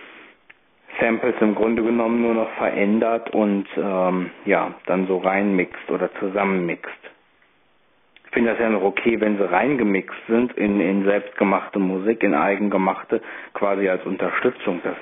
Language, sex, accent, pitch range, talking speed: German, male, German, 95-105 Hz, 140 wpm